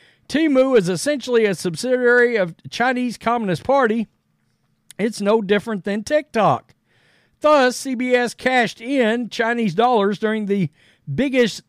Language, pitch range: English, 205-260 Hz